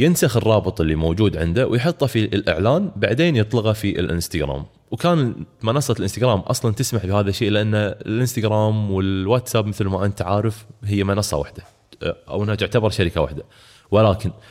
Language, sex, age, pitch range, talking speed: Arabic, male, 20-39, 95-130 Hz, 145 wpm